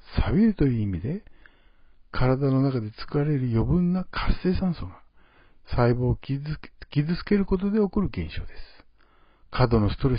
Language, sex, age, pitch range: Japanese, male, 60-79, 120-180 Hz